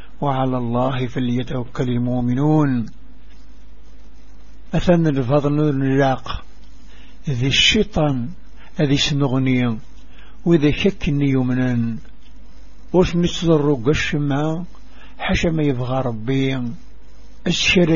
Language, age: Arabic, 60-79